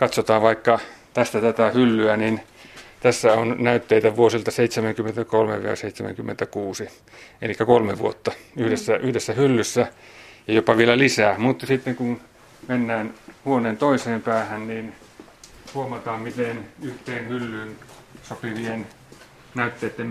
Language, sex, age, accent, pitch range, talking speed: Finnish, male, 30-49, native, 110-125 Hz, 105 wpm